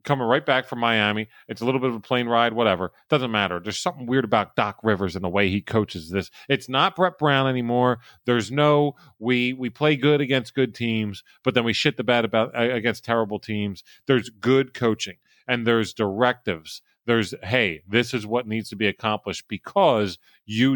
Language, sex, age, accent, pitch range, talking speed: English, male, 40-59, American, 100-125 Hz, 200 wpm